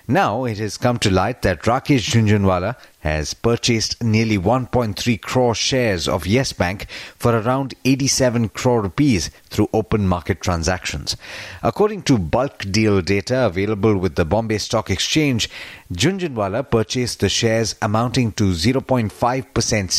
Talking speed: 135 wpm